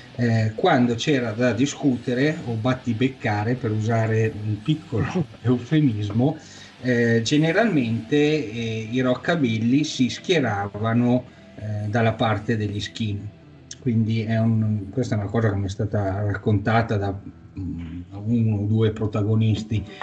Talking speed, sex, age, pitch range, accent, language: 125 wpm, male, 30-49, 110-130 Hz, native, Italian